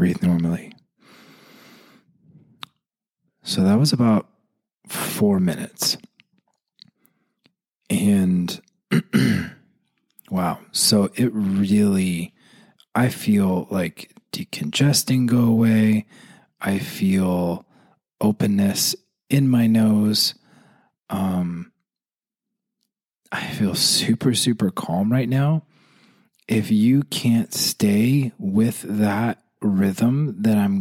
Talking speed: 80 wpm